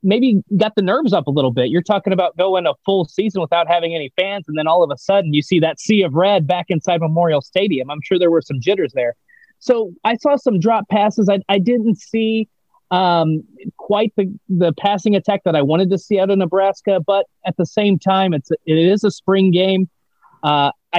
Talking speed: 225 wpm